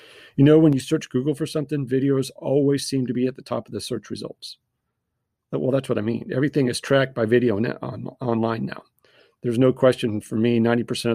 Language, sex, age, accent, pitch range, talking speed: English, male, 40-59, American, 115-135 Hz, 205 wpm